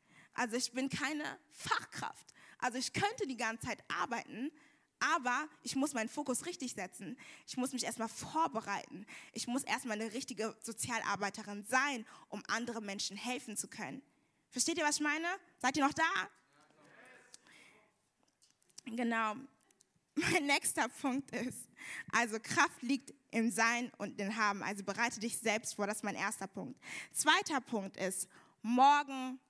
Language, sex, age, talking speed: German, female, 20-39, 150 wpm